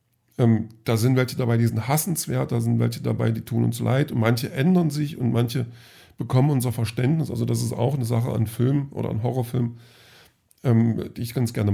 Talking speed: 200 wpm